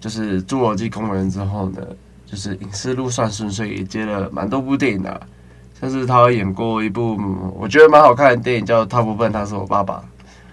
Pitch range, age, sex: 95-120 Hz, 20-39, male